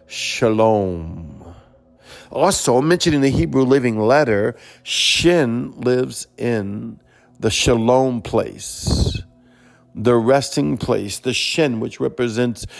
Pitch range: 105-130 Hz